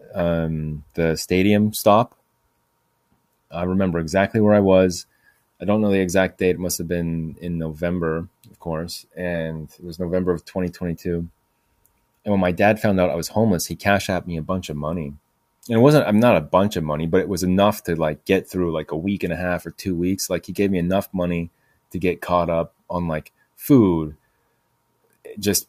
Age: 30-49